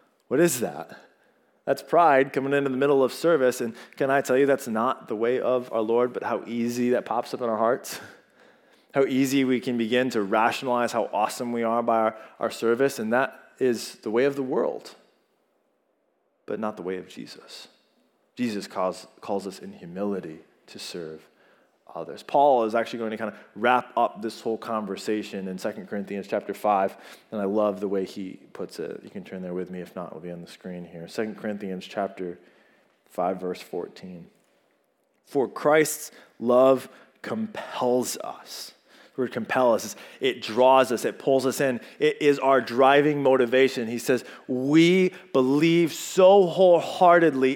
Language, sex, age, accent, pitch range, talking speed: English, male, 20-39, American, 105-140 Hz, 180 wpm